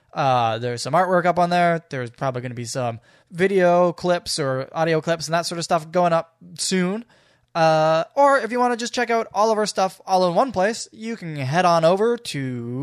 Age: 10-29